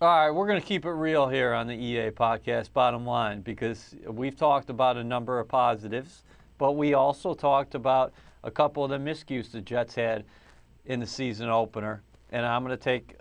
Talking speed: 205 wpm